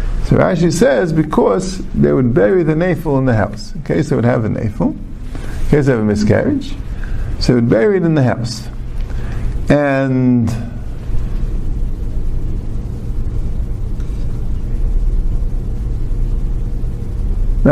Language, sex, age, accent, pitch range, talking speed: English, male, 50-69, American, 105-130 Hz, 110 wpm